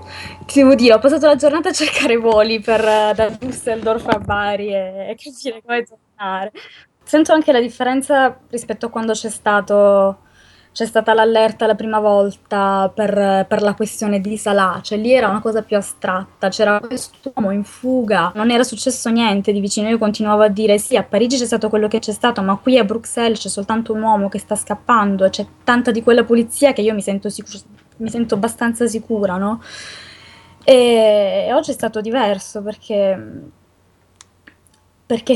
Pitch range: 205-235 Hz